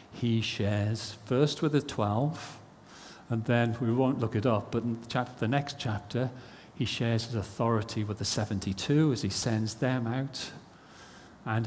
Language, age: English, 50-69